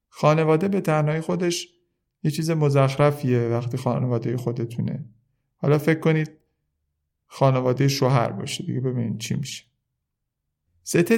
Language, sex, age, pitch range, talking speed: Persian, male, 50-69, 125-155 Hz, 115 wpm